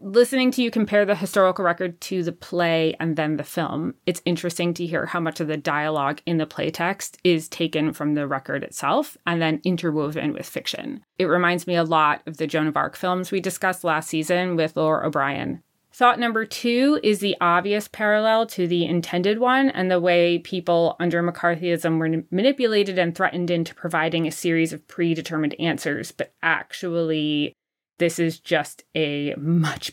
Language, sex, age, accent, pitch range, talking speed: English, female, 30-49, American, 155-180 Hz, 180 wpm